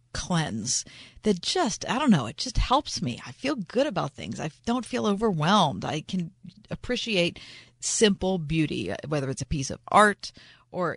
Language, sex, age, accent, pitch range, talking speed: English, female, 40-59, American, 140-200 Hz, 170 wpm